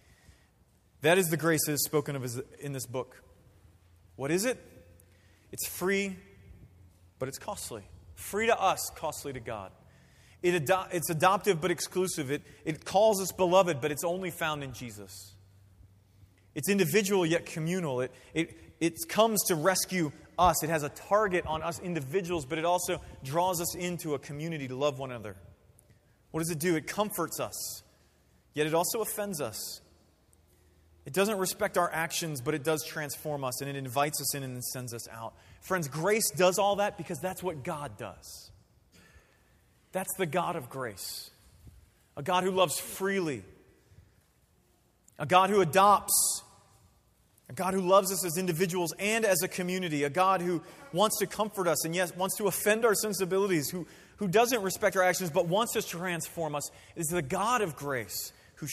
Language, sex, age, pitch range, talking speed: English, male, 30-49, 125-185 Hz, 175 wpm